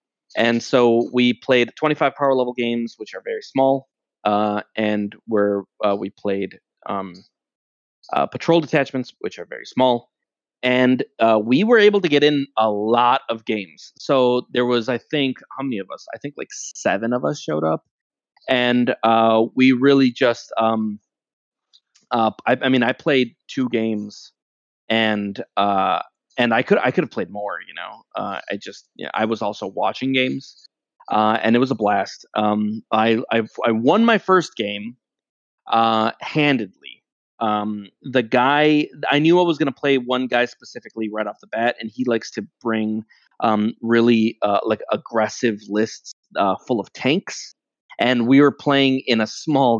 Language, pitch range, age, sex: English, 110-130 Hz, 30-49, male